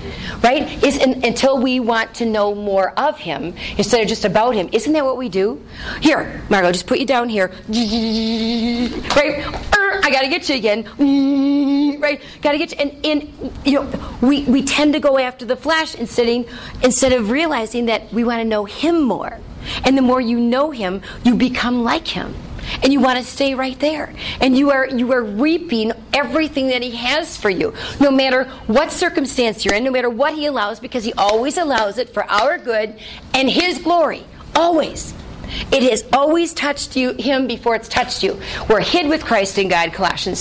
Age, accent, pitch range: 40-59, American, 230-290 Hz